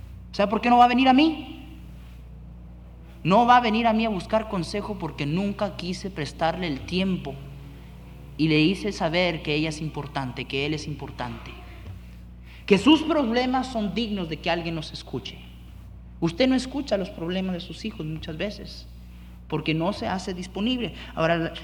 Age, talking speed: 40-59, 175 wpm